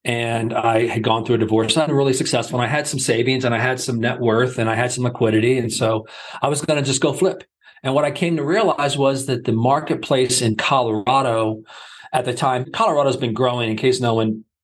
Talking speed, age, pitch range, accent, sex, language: 235 wpm, 40-59, 115-140 Hz, American, male, English